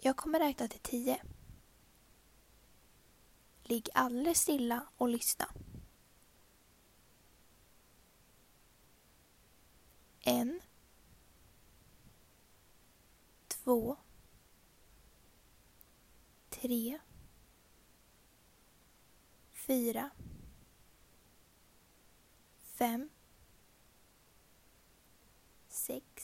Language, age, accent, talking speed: Swedish, 20-39, native, 35 wpm